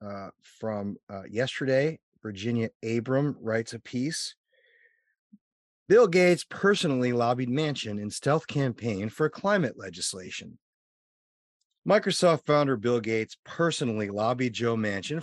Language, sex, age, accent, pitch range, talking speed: English, male, 30-49, American, 105-155 Hz, 110 wpm